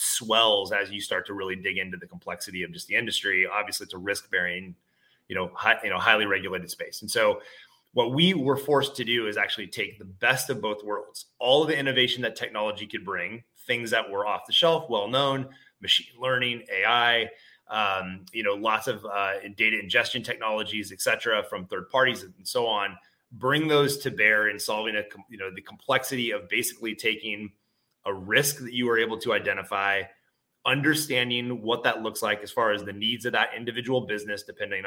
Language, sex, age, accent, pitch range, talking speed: English, male, 30-49, American, 105-135 Hz, 195 wpm